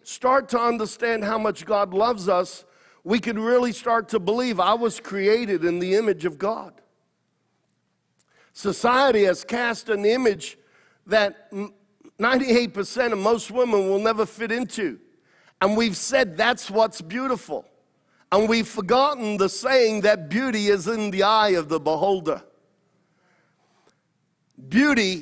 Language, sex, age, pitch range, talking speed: English, male, 50-69, 190-240 Hz, 135 wpm